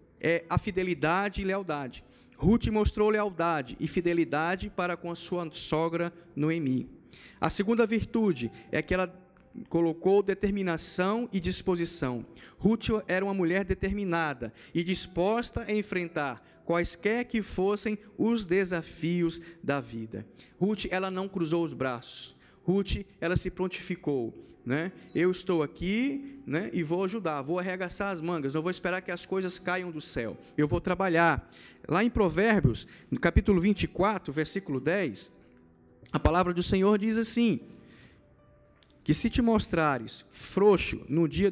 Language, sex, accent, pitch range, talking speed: Portuguese, male, Brazilian, 160-200 Hz, 140 wpm